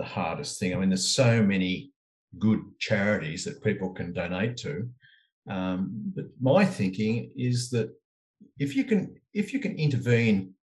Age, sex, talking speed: 50-69, male, 155 wpm